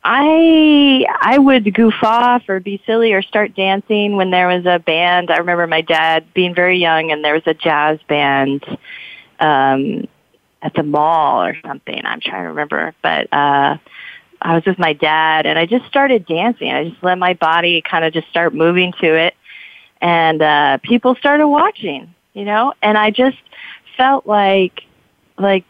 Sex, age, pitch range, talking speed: female, 30-49, 160-210 Hz, 175 wpm